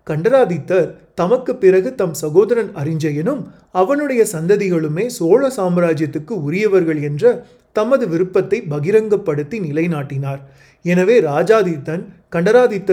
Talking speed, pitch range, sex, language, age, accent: 90 wpm, 160-210 Hz, male, Tamil, 30-49, native